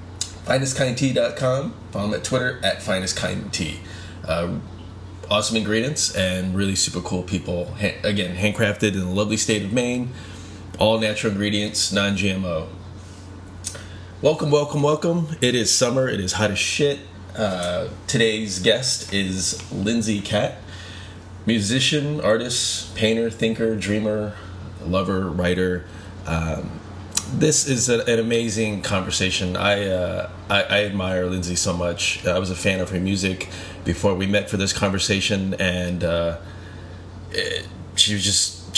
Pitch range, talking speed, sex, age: 90-110 Hz, 135 wpm, male, 20-39